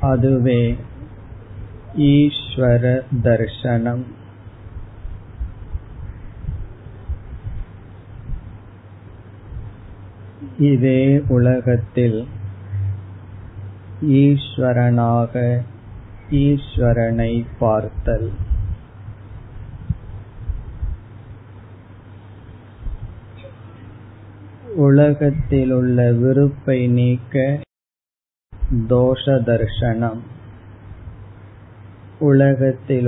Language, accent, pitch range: Tamil, native, 100-120 Hz